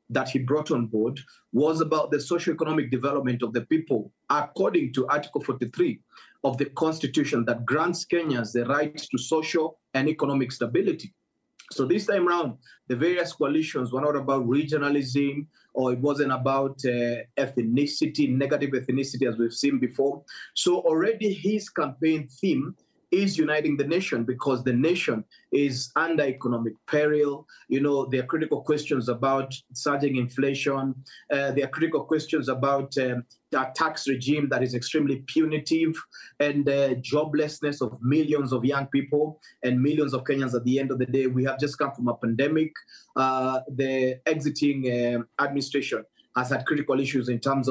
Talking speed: 160 wpm